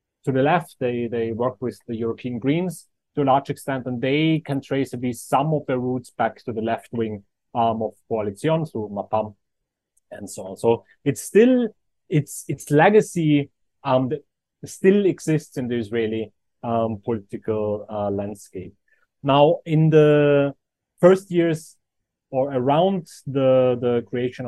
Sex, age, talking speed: male, 30-49, 155 wpm